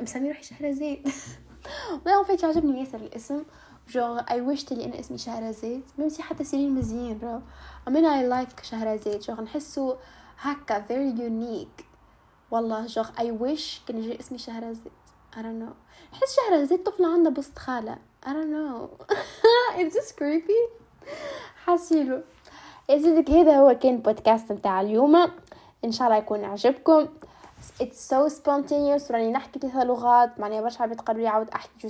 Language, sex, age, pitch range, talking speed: Arabic, female, 10-29, 220-285 Hz, 100 wpm